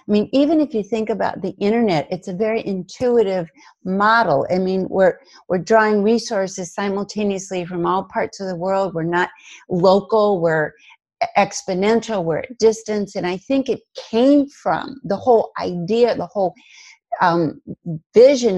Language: English